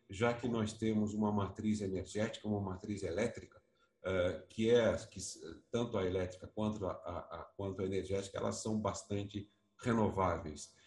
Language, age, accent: Portuguese, 50-69, Brazilian